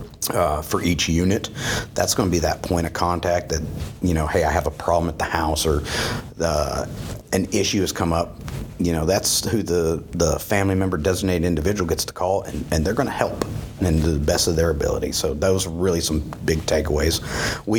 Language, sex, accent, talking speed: English, male, American, 215 wpm